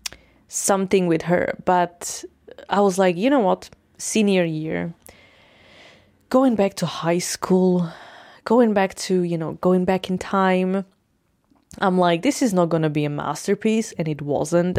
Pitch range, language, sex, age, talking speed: 170-205 Hz, English, female, 20-39, 155 wpm